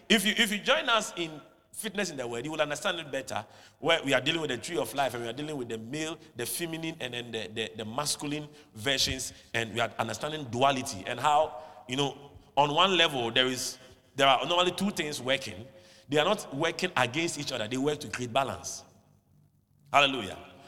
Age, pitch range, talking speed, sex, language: 40-59, 120-175 Hz, 215 wpm, male, English